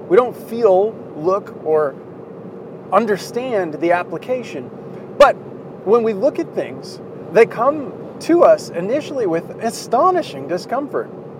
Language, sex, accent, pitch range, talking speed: English, male, American, 170-225 Hz, 115 wpm